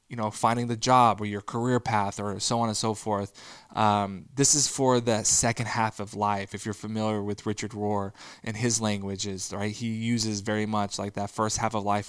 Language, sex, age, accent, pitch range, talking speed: English, male, 20-39, American, 100-110 Hz, 220 wpm